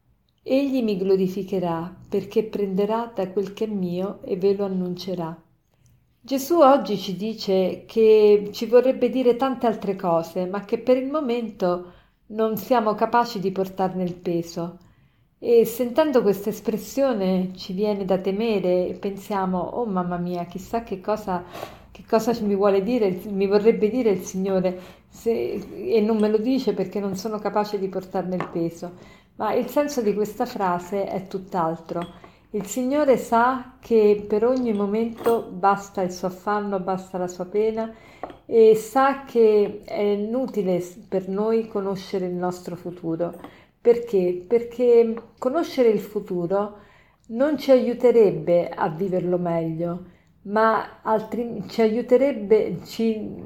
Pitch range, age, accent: 185-230 Hz, 50-69, native